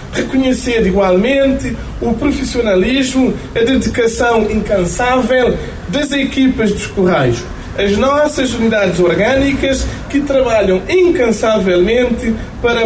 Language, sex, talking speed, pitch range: Portuguese, male, 90 wpm, 200-260 Hz